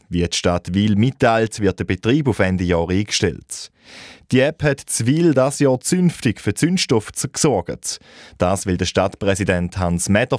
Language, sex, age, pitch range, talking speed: German, male, 20-39, 95-130 Hz, 165 wpm